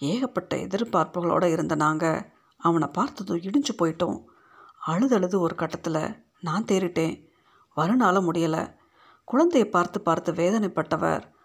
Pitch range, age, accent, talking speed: 165-220 Hz, 50-69, native, 100 wpm